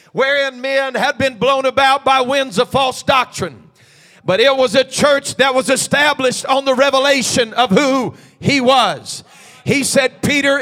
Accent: American